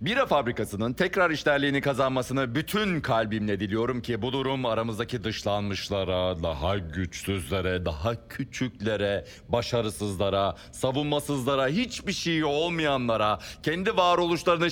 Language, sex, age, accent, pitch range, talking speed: Turkish, male, 40-59, native, 120-170 Hz, 100 wpm